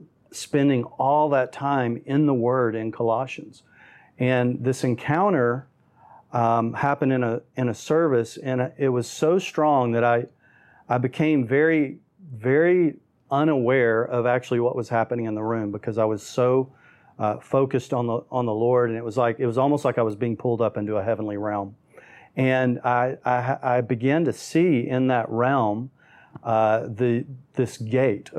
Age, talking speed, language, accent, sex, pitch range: 40-59, 175 wpm, English, American, male, 115-135 Hz